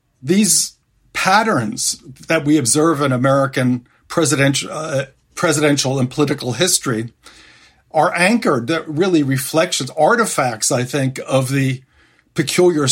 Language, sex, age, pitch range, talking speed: English, male, 50-69, 135-165 Hz, 110 wpm